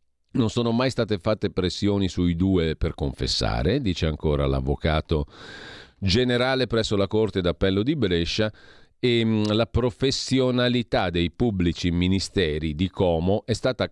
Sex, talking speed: male, 130 wpm